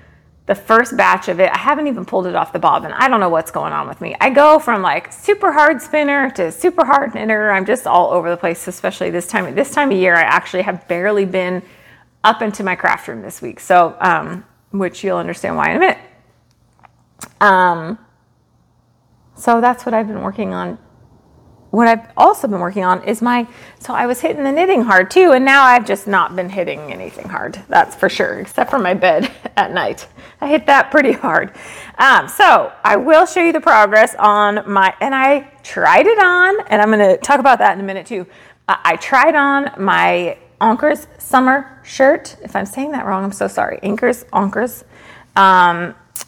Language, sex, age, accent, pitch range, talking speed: English, female, 30-49, American, 190-280 Hz, 205 wpm